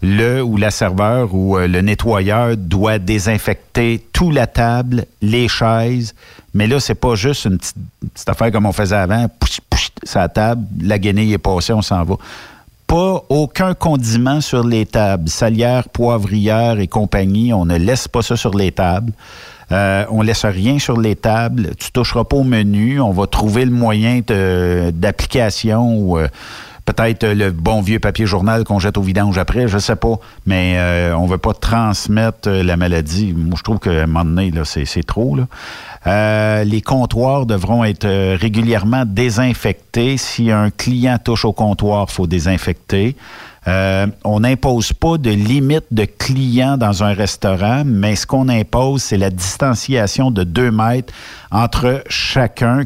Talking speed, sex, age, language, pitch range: 175 wpm, male, 50-69, French, 100-120 Hz